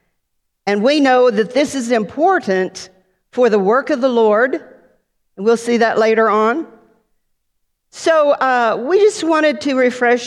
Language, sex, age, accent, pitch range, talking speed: English, female, 50-69, American, 190-240 Hz, 150 wpm